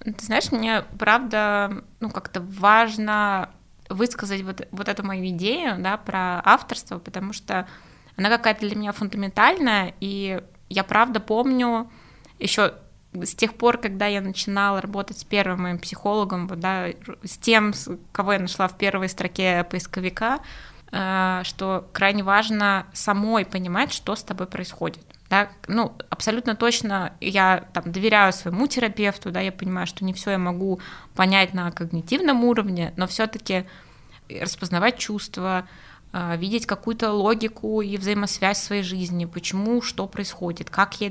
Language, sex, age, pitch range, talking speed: Russian, female, 20-39, 185-215 Hz, 145 wpm